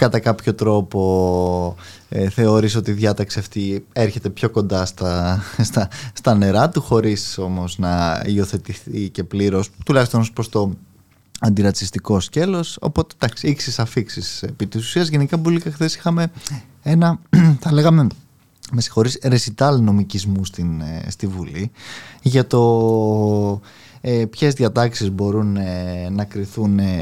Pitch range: 100-135 Hz